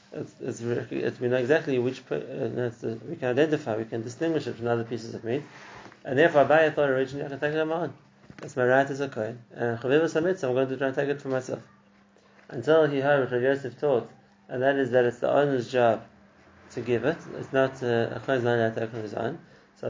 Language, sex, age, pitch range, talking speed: English, male, 30-49, 120-145 Hz, 235 wpm